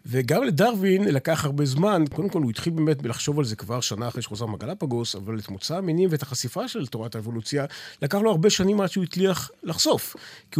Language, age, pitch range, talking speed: Hebrew, 40-59, 120-170 Hz, 205 wpm